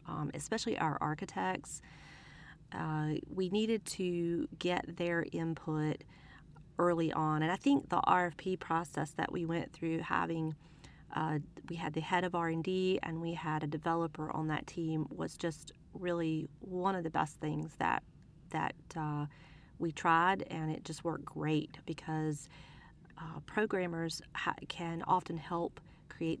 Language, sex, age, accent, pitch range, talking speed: English, female, 30-49, American, 155-180 Hz, 150 wpm